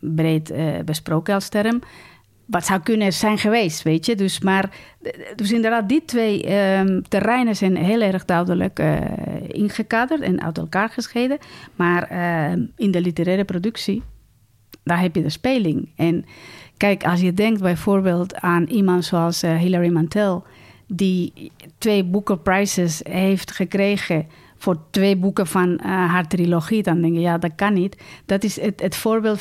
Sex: female